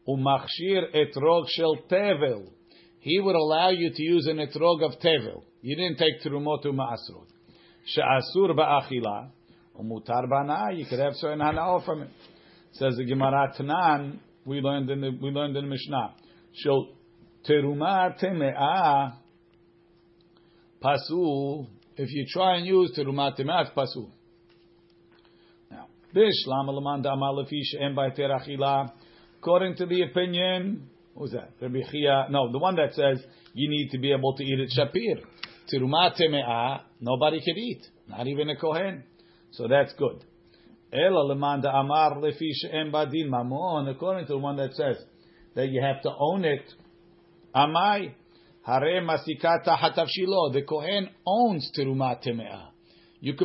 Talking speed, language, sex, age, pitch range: 110 wpm, English, male, 50-69, 135-175 Hz